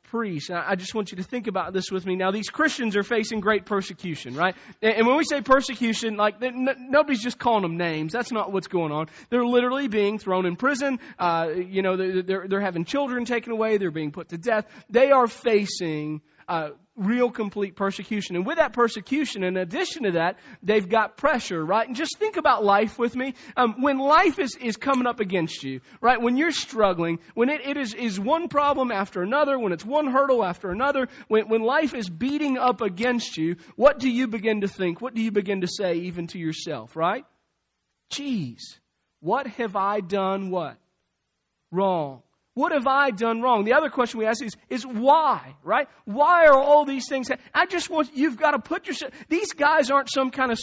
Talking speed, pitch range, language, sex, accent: 210 wpm, 195-275 Hz, English, male, American